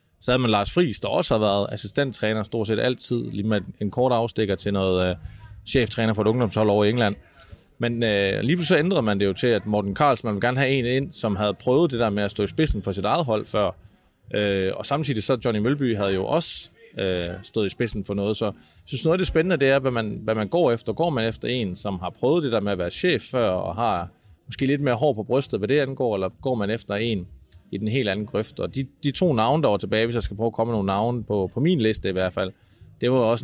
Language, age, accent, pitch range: Danish, 20-39, native, 100-120 Hz